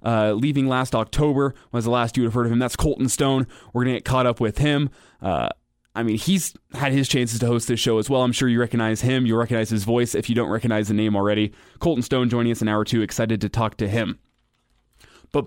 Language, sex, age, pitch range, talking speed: English, male, 20-39, 115-135 Hz, 260 wpm